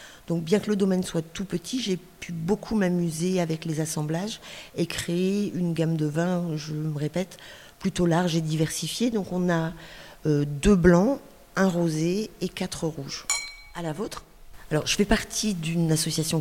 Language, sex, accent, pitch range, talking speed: French, female, French, 150-185 Hz, 175 wpm